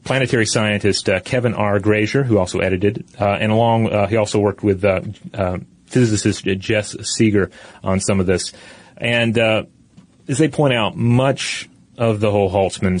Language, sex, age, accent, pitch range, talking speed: English, male, 30-49, American, 100-120 Hz, 170 wpm